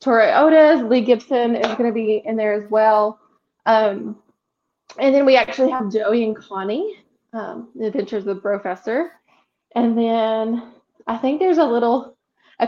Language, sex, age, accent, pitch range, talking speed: English, female, 20-39, American, 205-240 Hz, 160 wpm